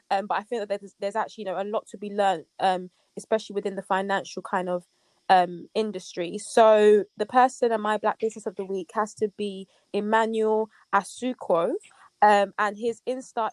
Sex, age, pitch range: female, 20-39, 200-230 Hz